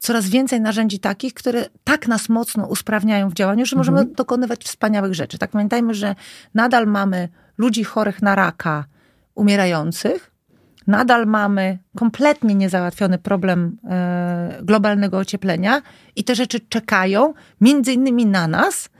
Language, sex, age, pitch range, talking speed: Polish, female, 40-59, 180-225 Hz, 130 wpm